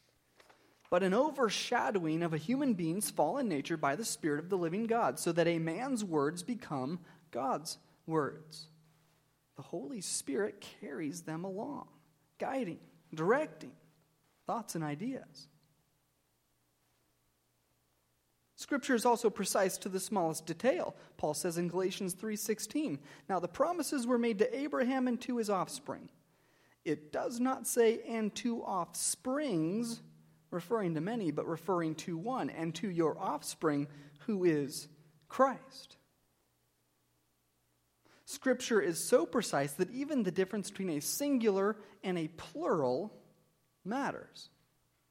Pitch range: 150-225 Hz